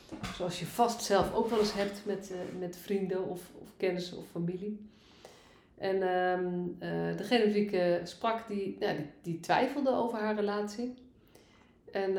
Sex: female